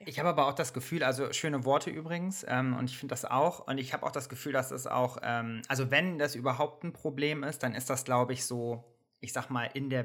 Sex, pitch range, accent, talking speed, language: male, 120-140 Hz, German, 265 wpm, German